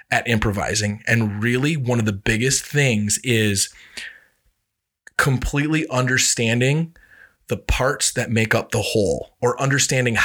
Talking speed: 125 wpm